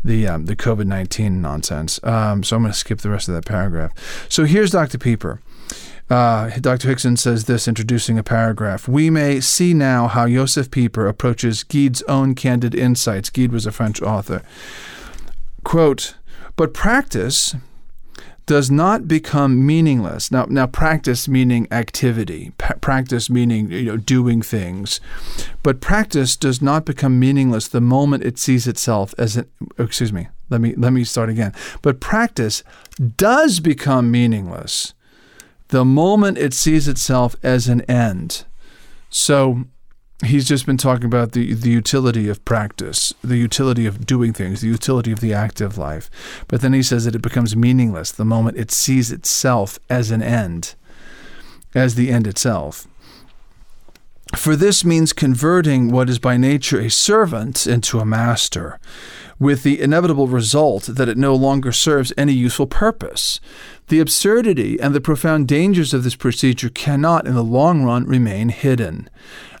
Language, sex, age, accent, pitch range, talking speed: English, male, 40-59, American, 115-140 Hz, 155 wpm